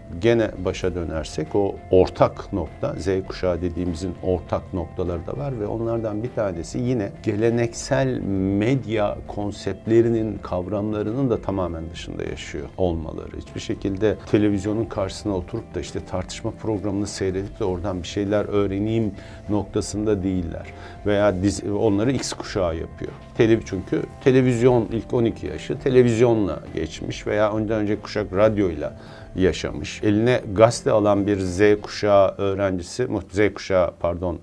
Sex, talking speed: male, 125 wpm